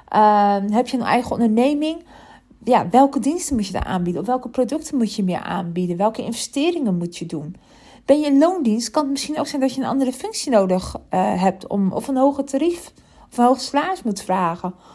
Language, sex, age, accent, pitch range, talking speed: Dutch, female, 40-59, Dutch, 195-275 Hz, 215 wpm